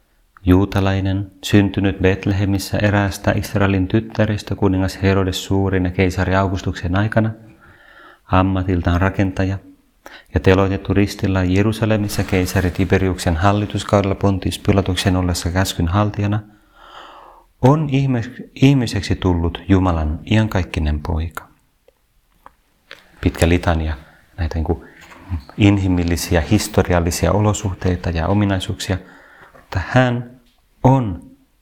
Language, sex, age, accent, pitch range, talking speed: Finnish, male, 30-49, native, 90-105 Hz, 80 wpm